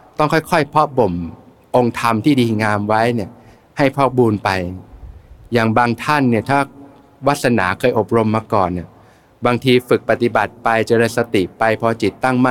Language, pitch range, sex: Thai, 105-130 Hz, male